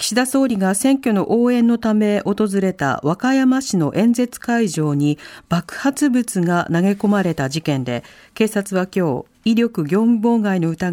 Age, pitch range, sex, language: 40-59, 180-255 Hz, female, Japanese